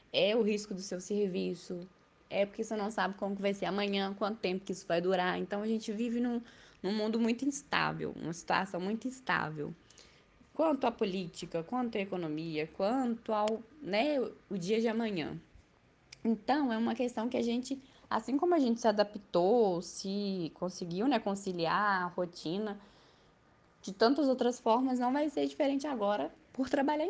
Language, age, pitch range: Portuguese, 10-29, 185-235 Hz